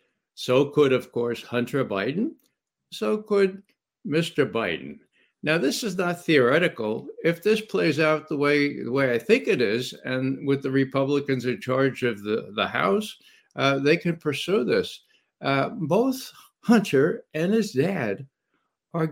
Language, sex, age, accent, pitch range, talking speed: English, male, 60-79, American, 130-185 Hz, 155 wpm